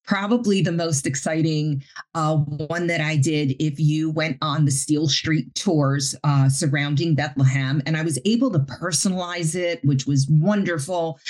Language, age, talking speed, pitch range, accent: English, 40-59, 160 wpm, 140-175 Hz, American